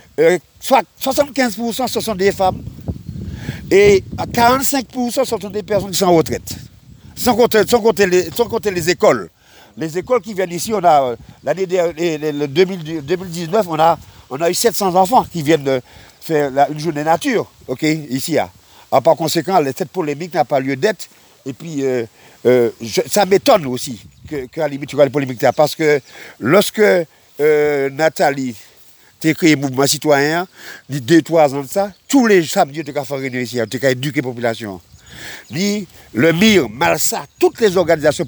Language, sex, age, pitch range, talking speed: French, male, 50-69, 145-200 Hz, 180 wpm